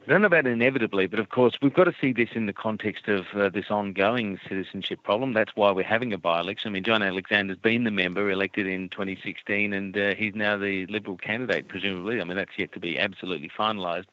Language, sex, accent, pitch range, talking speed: English, male, Australian, 90-105 Hz, 220 wpm